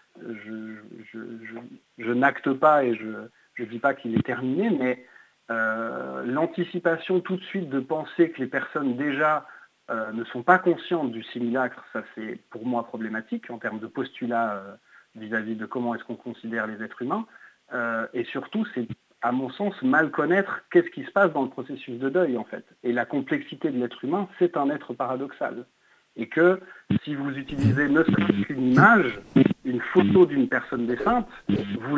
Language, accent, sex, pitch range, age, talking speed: French, French, male, 120-180 Hz, 50-69, 180 wpm